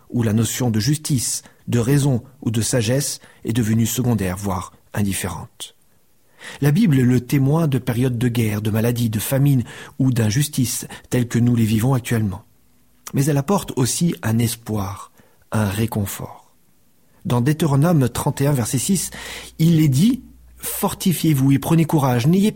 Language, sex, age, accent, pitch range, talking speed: French, male, 40-59, French, 115-150 Hz, 155 wpm